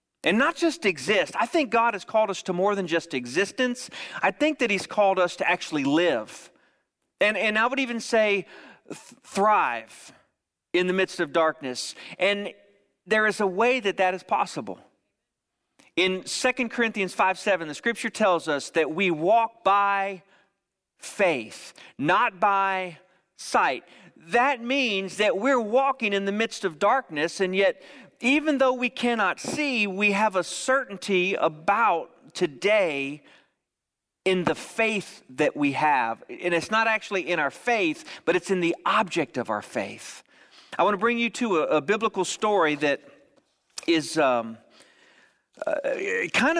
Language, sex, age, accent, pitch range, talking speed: English, male, 40-59, American, 175-225 Hz, 155 wpm